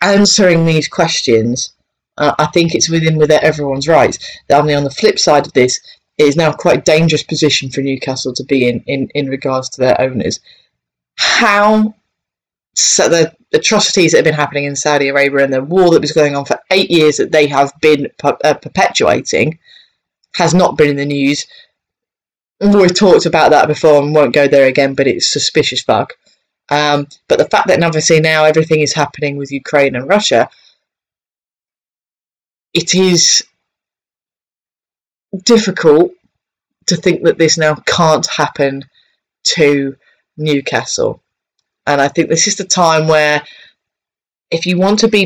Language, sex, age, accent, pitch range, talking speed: English, female, 20-39, British, 140-175 Hz, 165 wpm